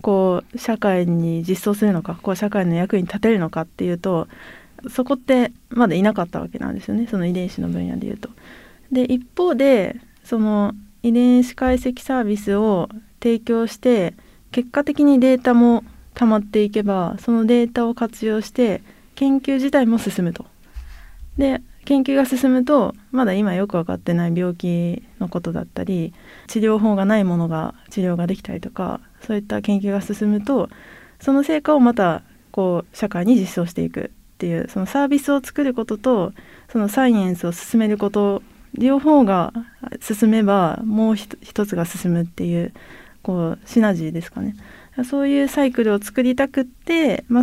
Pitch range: 190-255 Hz